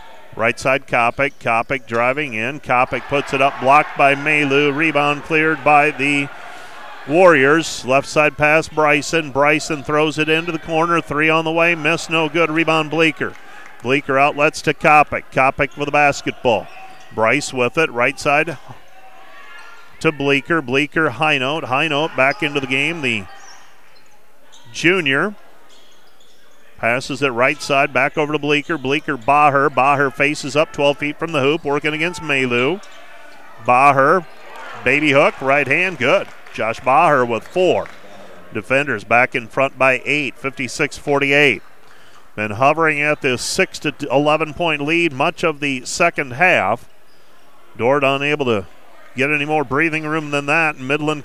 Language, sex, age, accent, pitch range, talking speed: English, male, 40-59, American, 135-155 Hz, 145 wpm